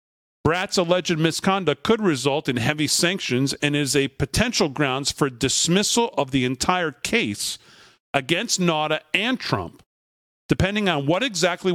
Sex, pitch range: male, 140-185 Hz